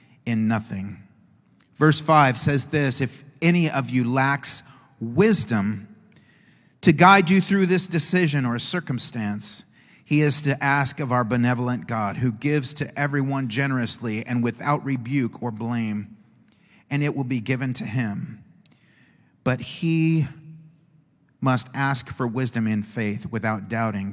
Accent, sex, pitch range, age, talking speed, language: American, male, 110-140 Hz, 40-59, 135 wpm, English